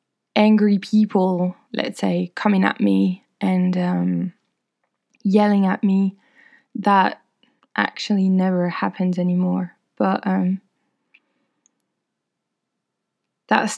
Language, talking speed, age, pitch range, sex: English, 85 wpm, 20-39, 195-235 Hz, female